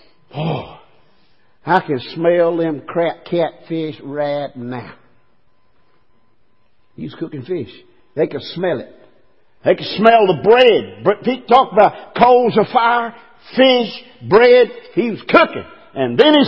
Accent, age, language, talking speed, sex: American, 50-69, English, 125 wpm, male